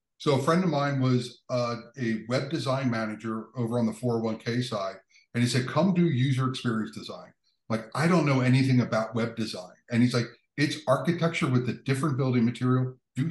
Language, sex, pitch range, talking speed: English, male, 115-140 Hz, 195 wpm